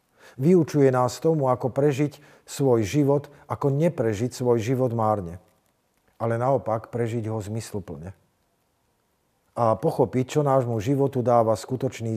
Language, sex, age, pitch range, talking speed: Slovak, male, 50-69, 120-145 Hz, 120 wpm